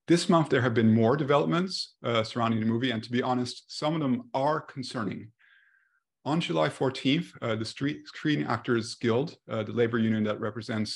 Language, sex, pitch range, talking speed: English, male, 115-135 Hz, 185 wpm